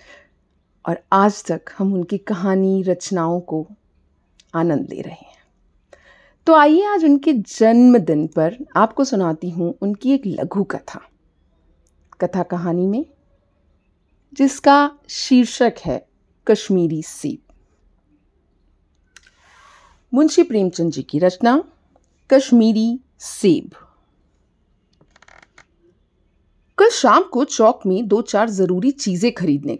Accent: native